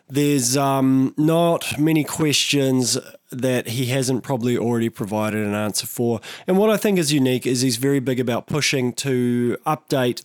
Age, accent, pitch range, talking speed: 20-39, Australian, 115-150 Hz, 165 wpm